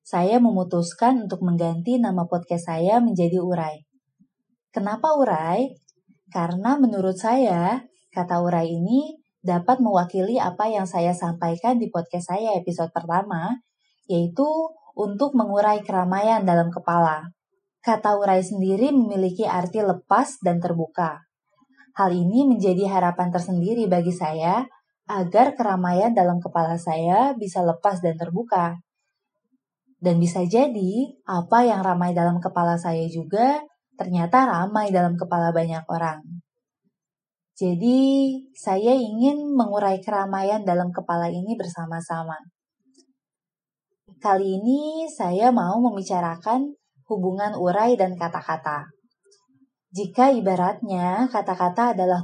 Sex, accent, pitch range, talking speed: female, native, 175-240 Hz, 110 wpm